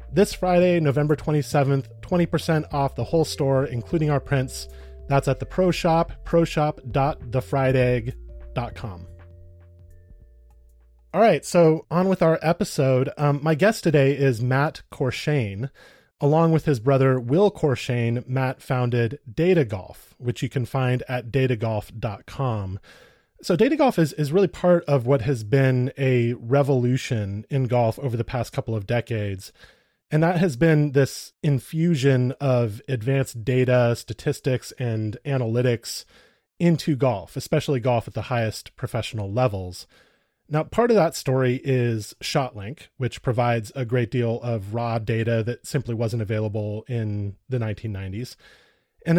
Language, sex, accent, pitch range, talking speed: English, male, American, 115-145 Hz, 140 wpm